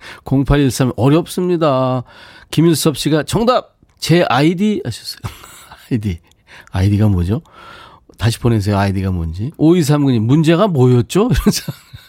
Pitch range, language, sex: 100-140 Hz, Korean, male